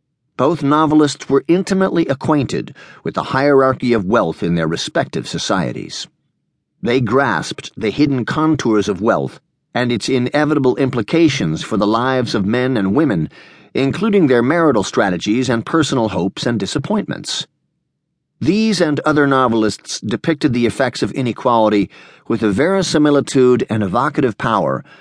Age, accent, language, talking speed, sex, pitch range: 50-69, American, English, 135 wpm, male, 115-155 Hz